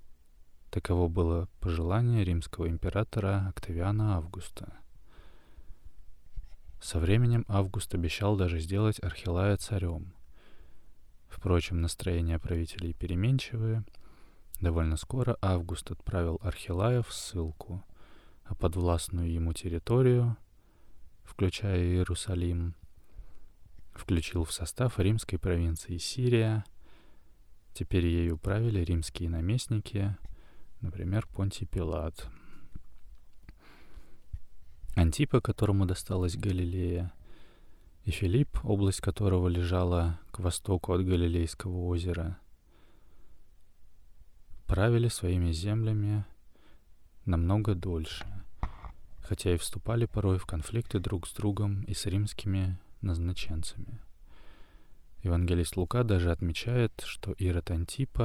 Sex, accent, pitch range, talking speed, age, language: male, native, 85-100 Hz, 90 wpm, 20-39, Russian